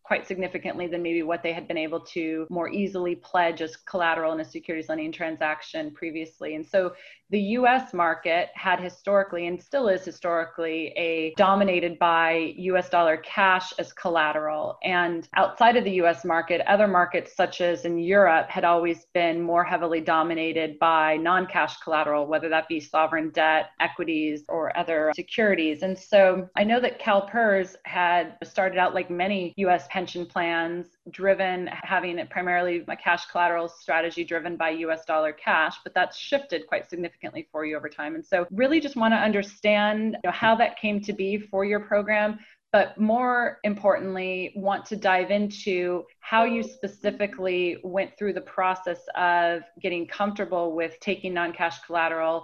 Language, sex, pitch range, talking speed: English, female, 165-195 Hz, 165 wpm